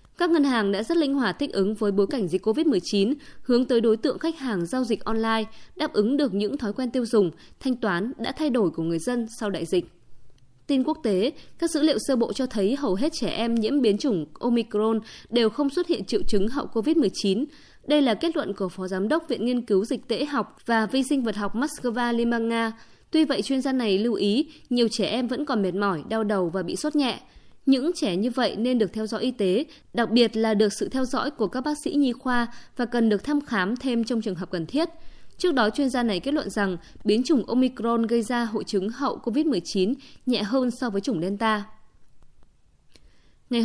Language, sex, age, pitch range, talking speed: Vietnamese, female, 20-39, 210-270 Hz, 230 wpm